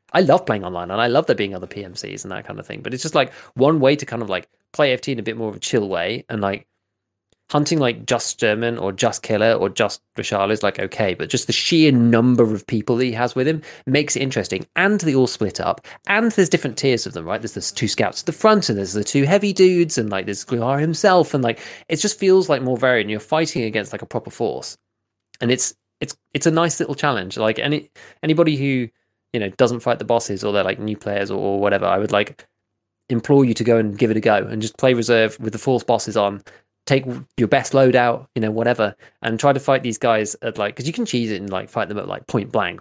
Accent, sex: British, male